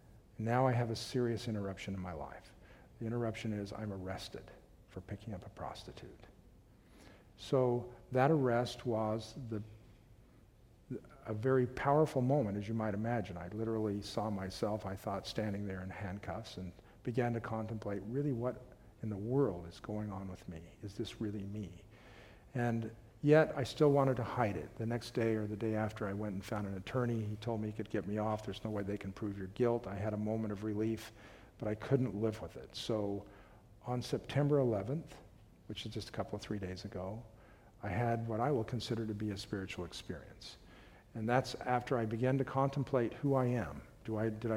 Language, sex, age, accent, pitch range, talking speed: English, male, 50-69, American, 105-125 Hz, 195 wpm